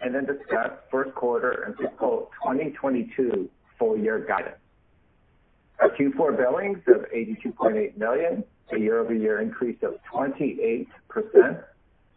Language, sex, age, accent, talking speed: English, male, 60-79, American, 105 wpm